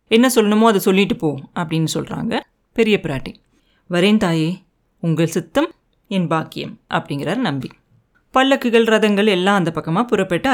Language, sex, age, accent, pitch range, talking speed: Tamil, female, 30-49, native, 170-235 Hz, 130 wpm